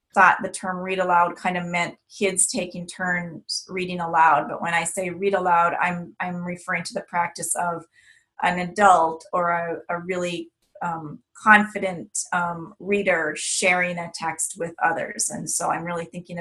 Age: 30-49